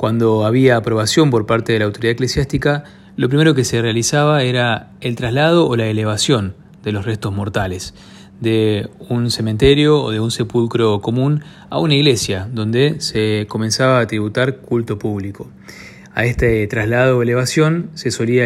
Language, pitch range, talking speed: Spanish, 110-135 Hz, 160 wpm